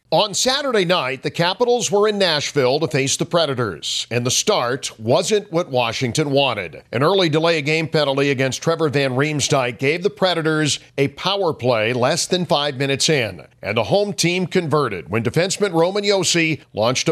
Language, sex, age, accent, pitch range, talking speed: English, male, 50-69, American, 130-165 Hz, 170 wpm